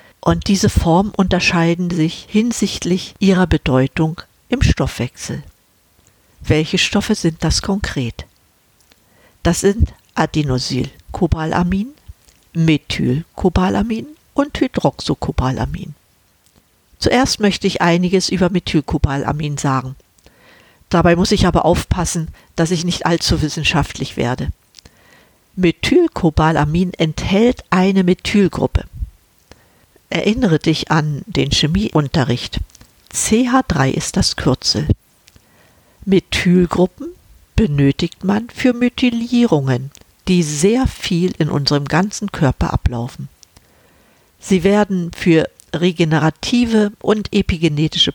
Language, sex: German, female